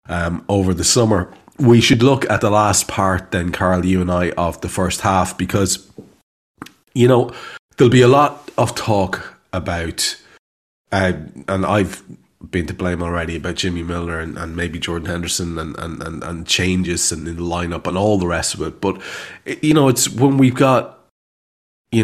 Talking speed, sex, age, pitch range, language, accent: 180 wpm, male, 30-49, 85-105 Hz, English, Irish